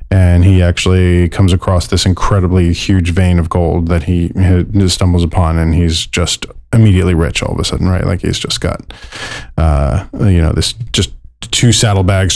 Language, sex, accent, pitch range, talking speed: English, male, American, 90-105 Hz, 175 wpm